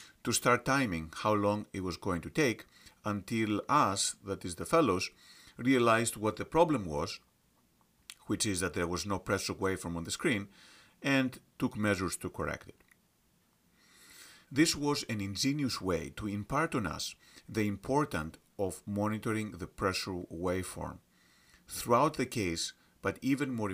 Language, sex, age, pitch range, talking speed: English, male, 40-59, 90-125 Hz, 150 wpm